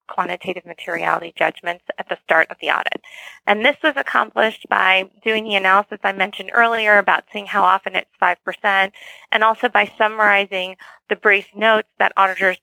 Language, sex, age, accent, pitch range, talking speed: English, female, 30-49, American, 190-230 Hz, 165 wpm